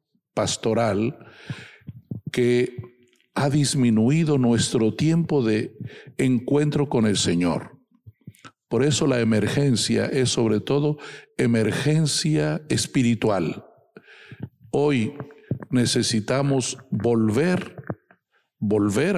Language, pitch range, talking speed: English, 110-140 Hz, 75 wpm